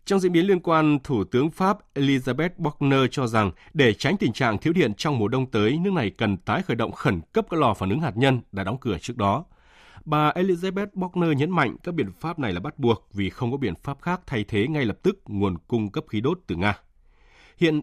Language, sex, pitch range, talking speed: Vietnamese, male, 105-150 Hz, 240 wpm